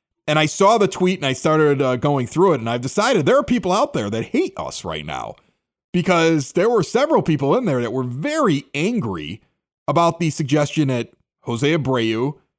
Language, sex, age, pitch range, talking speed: English, male, 30-49, 125-185 Hz, 200 wpm